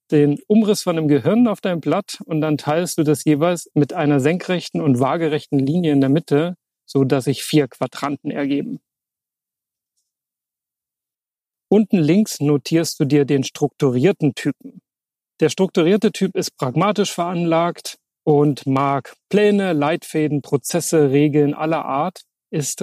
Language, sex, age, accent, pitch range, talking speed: German, male, 40-59, German, 145-175 Hz, 135 wpm